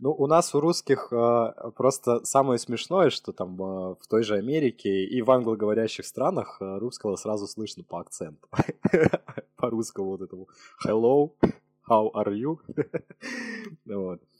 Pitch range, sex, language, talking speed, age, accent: 100-135 Hz, male, Russian, 125 wpm, 20-39, native